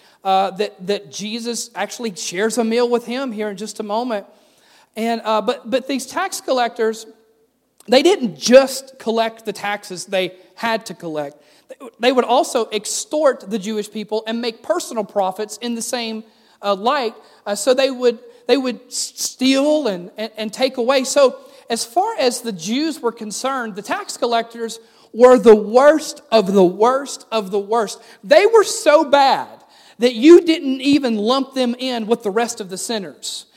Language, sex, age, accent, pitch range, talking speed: English, male, 40-59, American, 215-275 Hz, 175 wpm